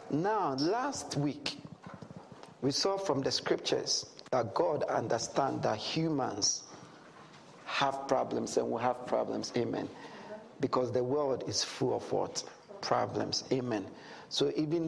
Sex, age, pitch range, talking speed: male, 50-69, 130-165 Hz, 125 wpm